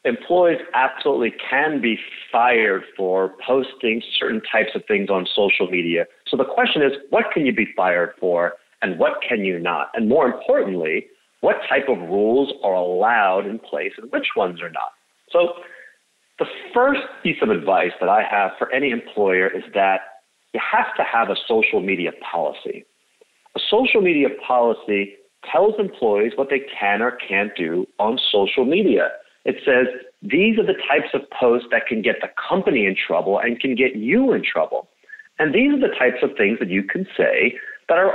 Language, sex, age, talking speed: English, male, 40-59, 180 wpm